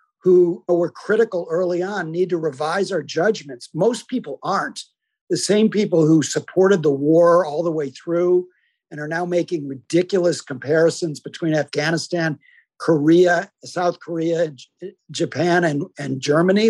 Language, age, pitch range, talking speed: English, 50-69, 160-195 Hz, 140 wpm